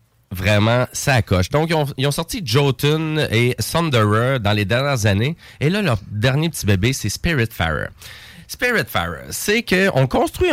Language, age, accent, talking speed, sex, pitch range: French, 30-49, Canadian, 160 wpm, male, 105-145 Hz